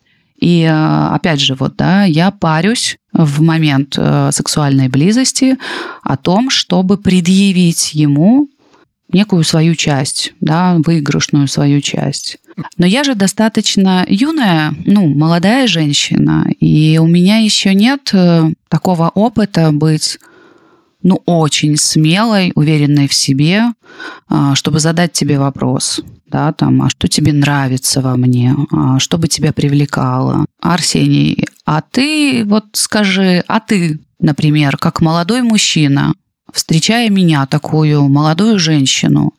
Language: Russian